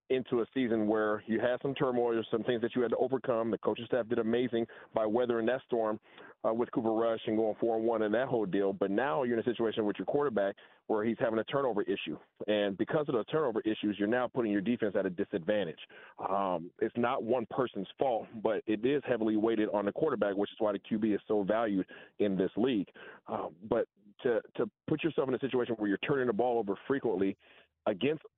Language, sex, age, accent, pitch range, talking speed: English, male, 40-59, American, 105-125 Hz, 230 wpm